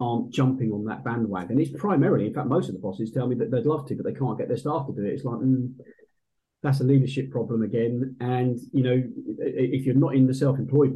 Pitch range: 115-135 Hz